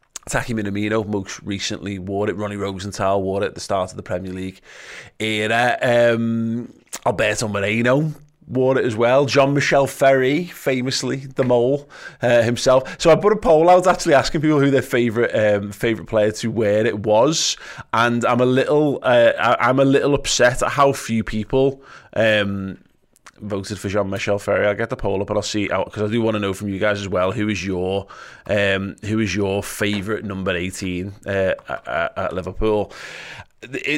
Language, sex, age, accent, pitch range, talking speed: English, male, 20-39, British, 100-130 Hz, 185 wpm